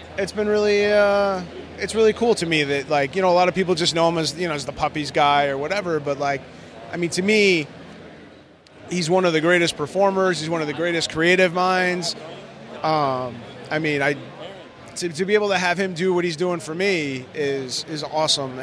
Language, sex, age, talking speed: English, male, 30-49, 220 wpm